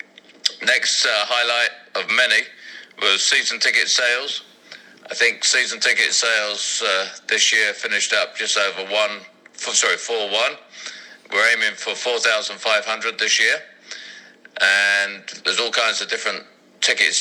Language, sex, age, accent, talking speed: English, male, 40-59, British, 125 wpm